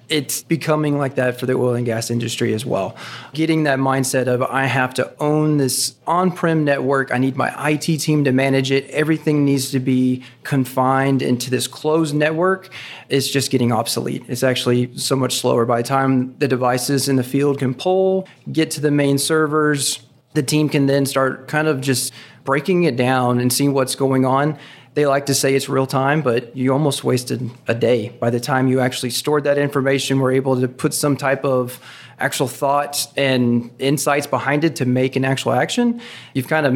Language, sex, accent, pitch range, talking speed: English, male, American, 125-145 Hz, 200 wpm